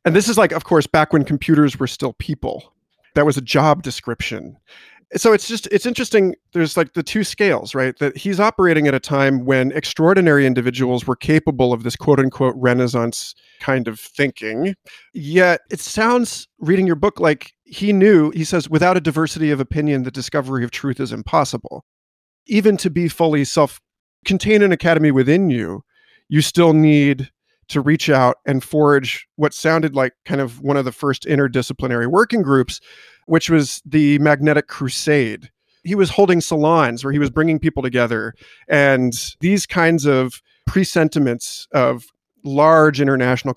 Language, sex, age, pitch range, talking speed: English, male, 40-59, 130-165 Hz, 165 wpm